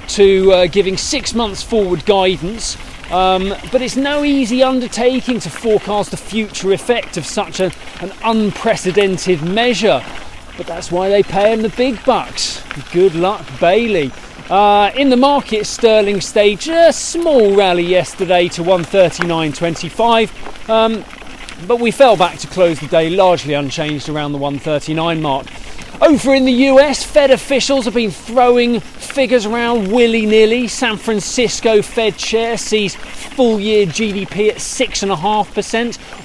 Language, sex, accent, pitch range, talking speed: English, male, British, 190-240 Hz, 140 wpm